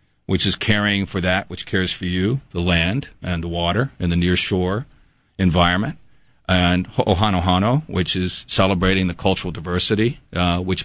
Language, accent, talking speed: English, American, 160 wpm